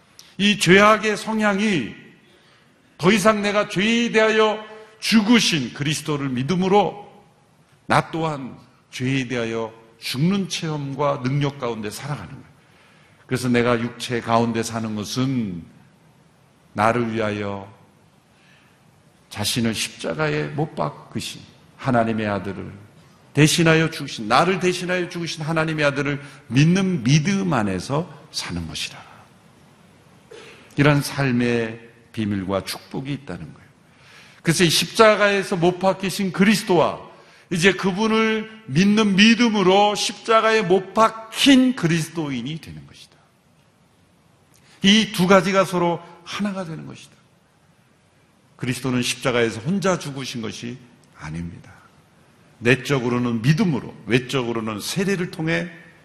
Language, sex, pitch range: Korean, male, 120-190 Hz